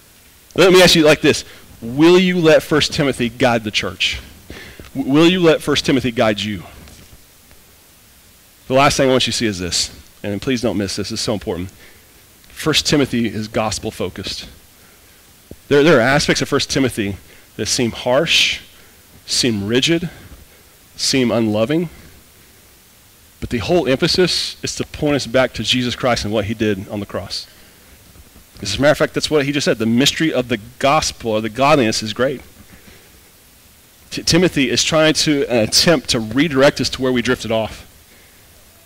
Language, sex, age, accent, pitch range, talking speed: English, male, 30-49, American, 100-155 Hz, 175 wpm